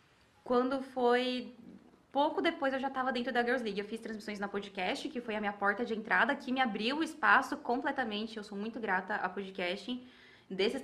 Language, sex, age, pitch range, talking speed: Portuguese, female, 20-39, 225-285 Hz, 200 wpm